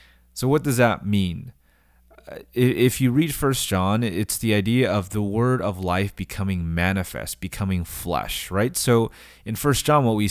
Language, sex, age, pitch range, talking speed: English, male, 20-39, 85-120 Hz, 170 wpm